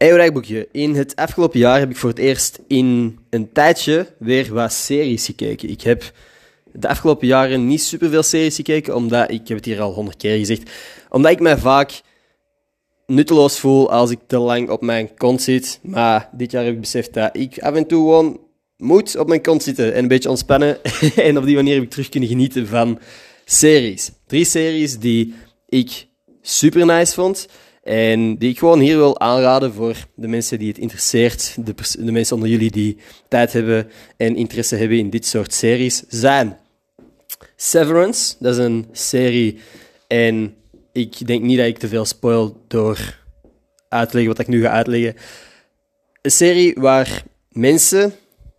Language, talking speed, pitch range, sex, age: Dutch, 180 wpm, 115-145 Hz, male, 20-39